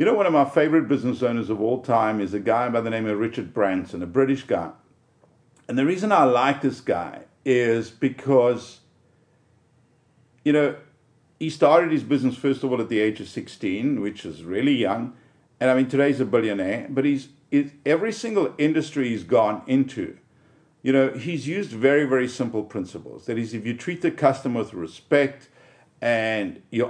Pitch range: 110-145 Hz